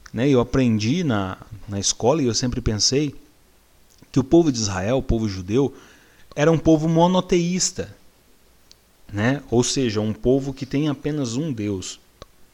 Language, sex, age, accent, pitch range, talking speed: Portuguese, male, 40-59, Brazilian, 105-145 Hz, 145 wpm